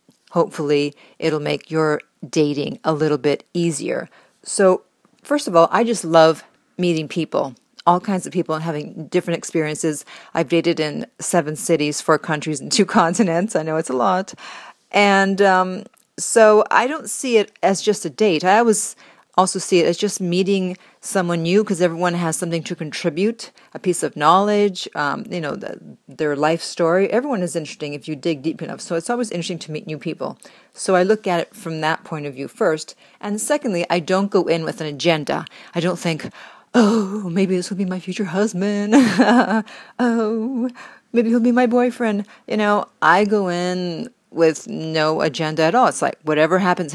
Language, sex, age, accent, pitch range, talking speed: English, female, 40-59, American, 160-205 Hz, 185 wpm